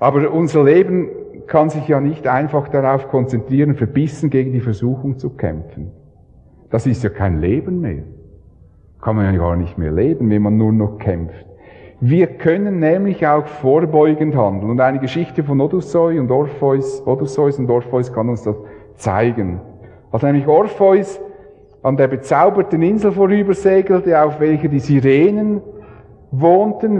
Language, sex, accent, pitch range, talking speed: English, male, Austrian, 110-165 Hz, 150 wpm